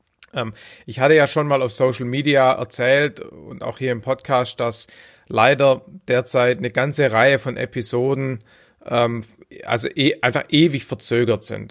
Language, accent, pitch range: German, German, 115-135 Hz